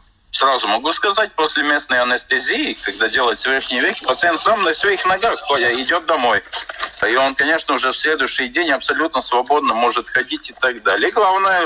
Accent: native